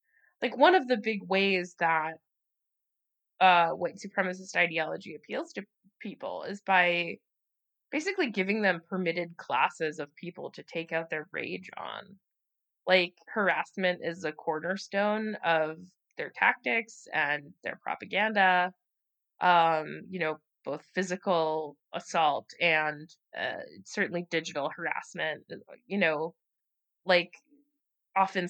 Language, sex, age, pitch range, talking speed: English, female, 20-39, 165-210 Hz, 120 wpm